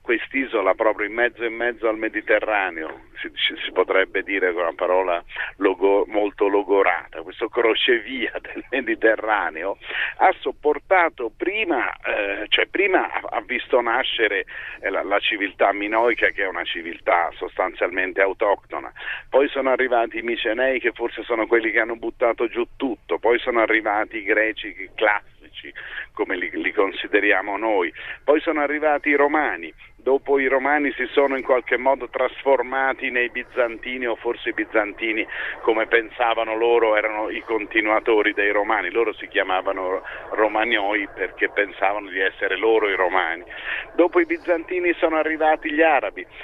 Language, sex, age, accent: Italian, male, 50-69, native